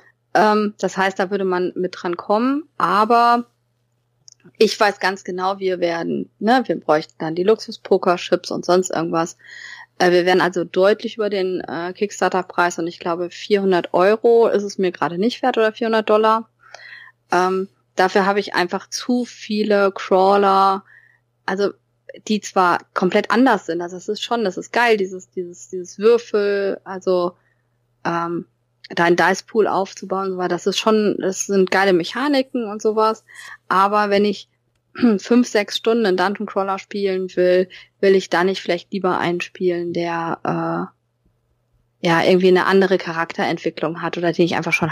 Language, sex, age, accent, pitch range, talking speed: German, female, 20-39, German, 175-205 Hz, 160 wpm